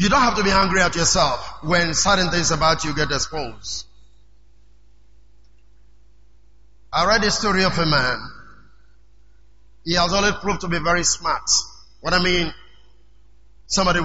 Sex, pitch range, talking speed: male, 150-195 Hz, 145 wpm